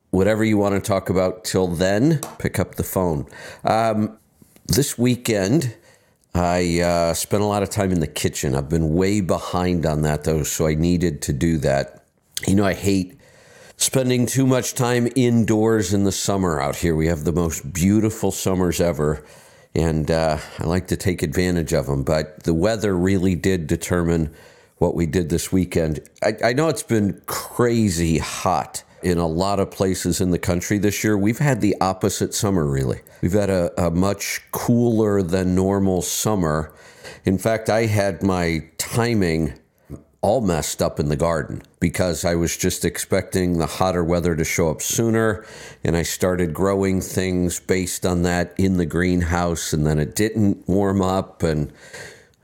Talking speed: 175 wpm